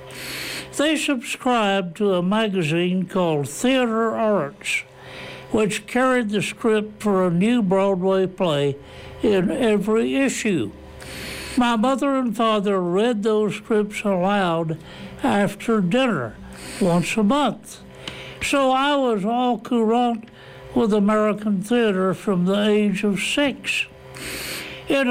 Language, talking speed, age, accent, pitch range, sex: English, 110 wpm, 60-79, American, 180-235 Hz, male